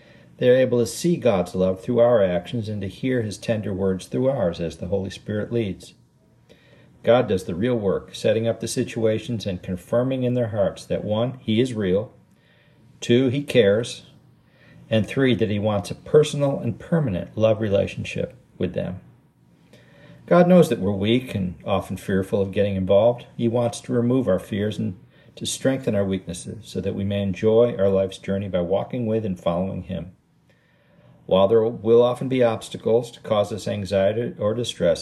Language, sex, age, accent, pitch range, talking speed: English, male, 50-69, American, 95-120 Hz, 180 wpm